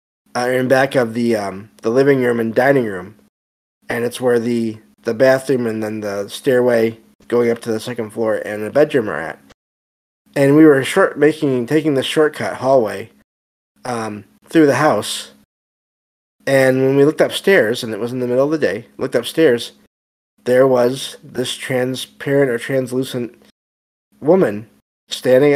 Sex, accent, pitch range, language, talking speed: male, American, 105-130 Hz, English, 165 wpm